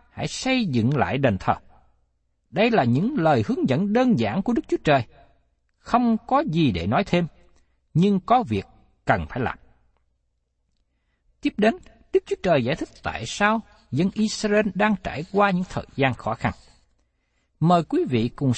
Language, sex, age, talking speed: Vietnamese, male, 60-79, 170 wpm